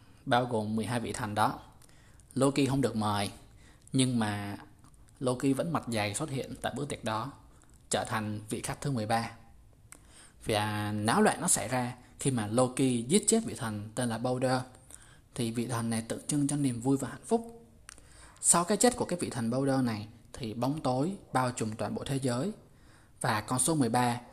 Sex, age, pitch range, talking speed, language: male, 20-39, 115-150 Hz, 190 wpm, Vietnamese